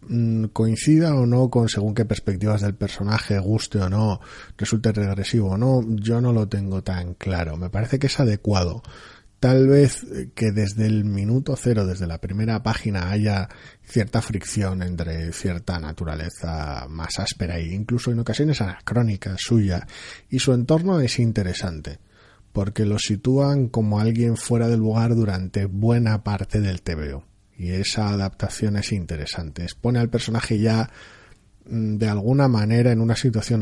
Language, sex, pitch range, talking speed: Spanish, male, 90-115 Hz, 150 wpm